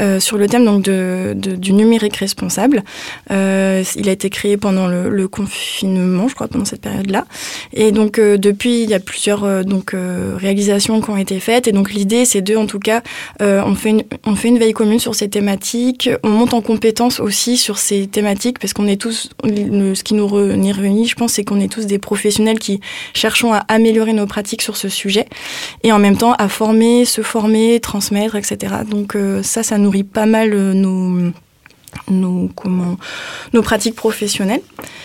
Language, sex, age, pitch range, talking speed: French, female, 20-39, 195-220 Hz, 200 wpm